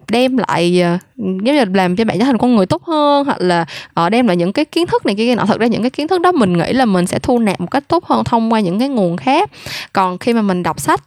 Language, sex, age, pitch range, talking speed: Vietnamese, female, 10-29, 185-270 Hz, 295 wpm